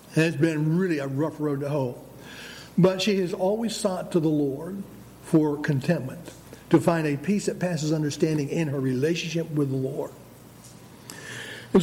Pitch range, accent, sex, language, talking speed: 155-205 Hz, American, male, English, 165 wpm